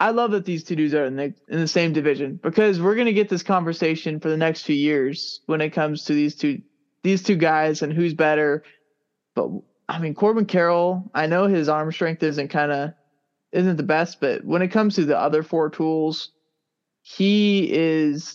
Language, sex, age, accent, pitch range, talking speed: English, male, 20-39, American, 150-195 Hz, 210 wpm